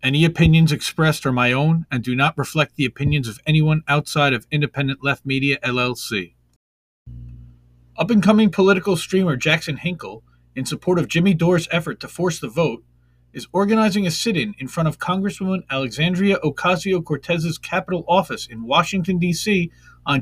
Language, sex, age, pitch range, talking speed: English, male, 40-59, 120-165 Hz, 155 wpm